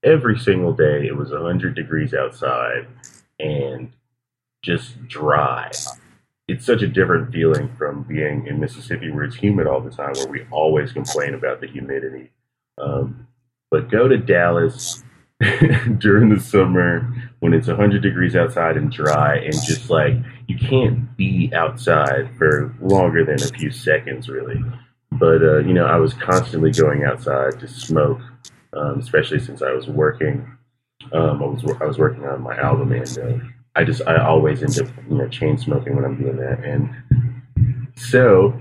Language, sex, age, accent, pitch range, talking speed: English, male, 30-49, American, 95-125 Hz, 165 wpm